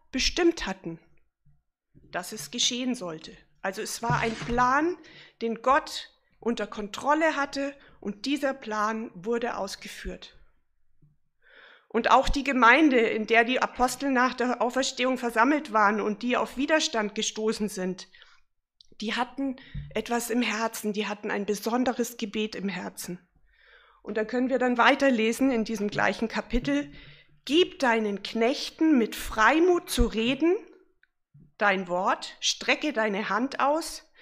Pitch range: 205-265 Hz